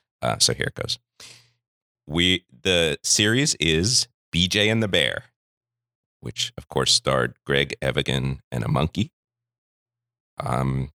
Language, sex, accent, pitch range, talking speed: English, male, American, 75-115 Hz, 125 wpm